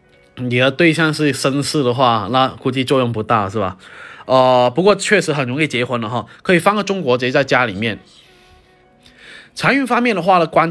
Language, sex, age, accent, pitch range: Chinese, male, 20-39, native, 120-160 Hz